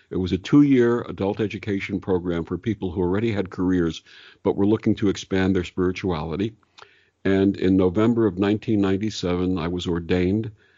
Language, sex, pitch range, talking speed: English, male, 90-105 Hz, 155 wpm